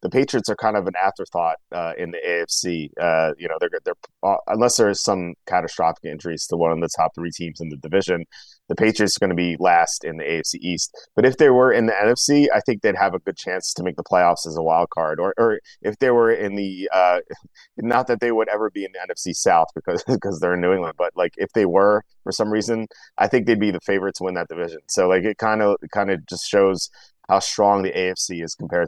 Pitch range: 90-115 Hz